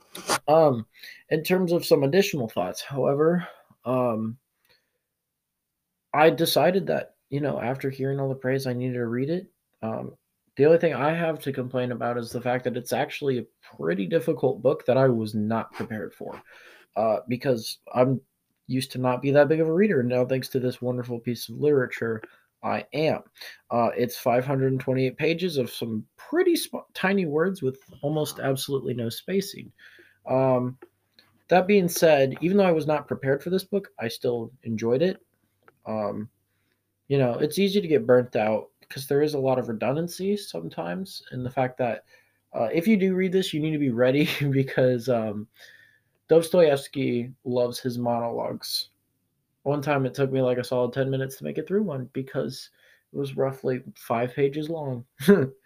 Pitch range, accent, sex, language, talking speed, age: 125-155 Hz, American, male, English, 175 wpm, 20-39